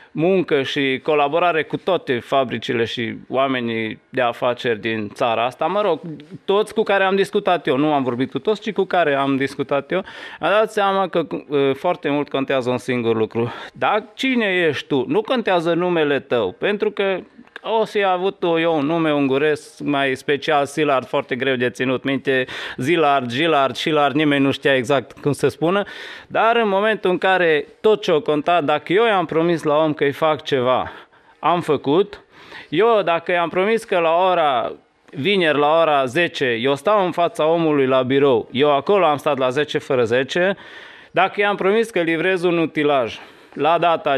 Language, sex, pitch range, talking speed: Romanian, male, 140-195 Hz, 180 wpm